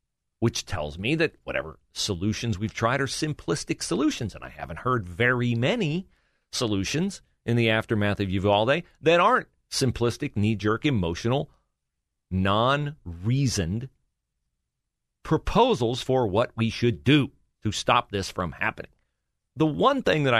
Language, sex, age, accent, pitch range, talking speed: English, male, 40-59, American, 95-140 Hz, 130 wpm